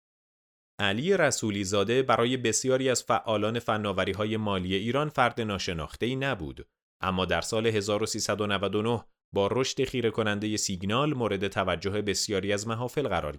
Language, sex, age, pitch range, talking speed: Persian, male, 30-49, 100-130 Hz, 130 wpm